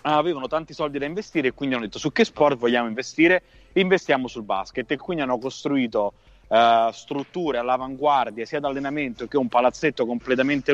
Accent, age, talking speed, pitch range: native, 30-49, 175 wpm, 120-145 Hz